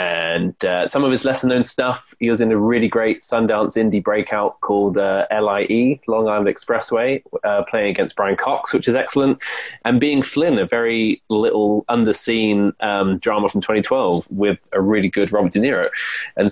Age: 20-39